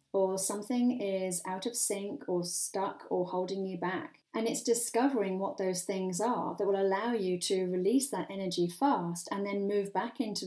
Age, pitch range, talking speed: 30-49, 180-240 Hz, 190 wpm